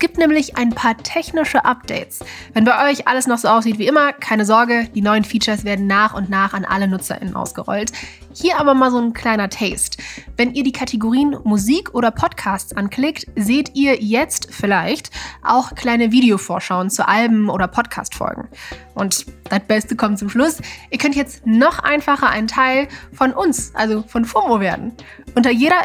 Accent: German